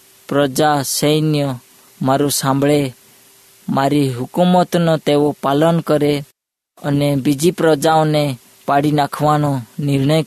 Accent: native